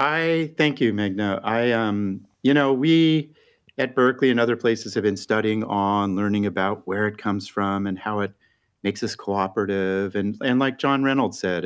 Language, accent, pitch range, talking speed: English, American, 95-115 Hz, 185 wpm